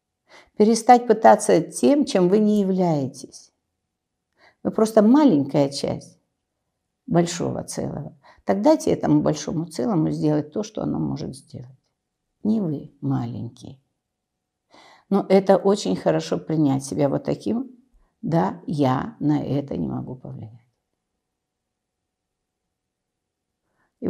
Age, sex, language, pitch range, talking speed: 50-69, female, Russian, 145-220 Hz, 105 wpm